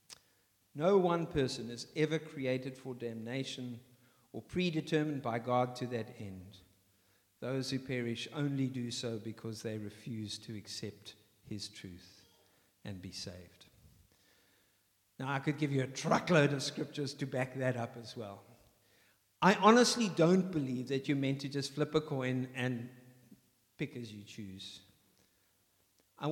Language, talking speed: English, 145 wpm